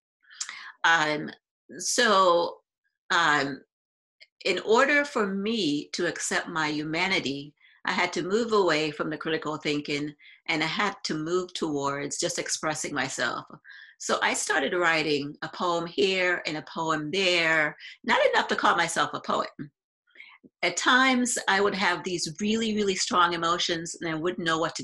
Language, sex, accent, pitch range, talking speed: English, female, American, 160-215 Hz, 150 wpm